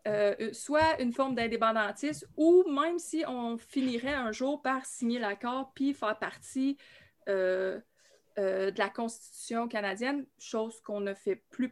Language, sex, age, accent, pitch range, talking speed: French, female, 20-39, Canadian, 215-270 Hz, 150 wpm